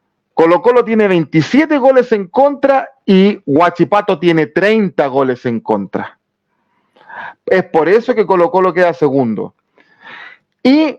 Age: 40-59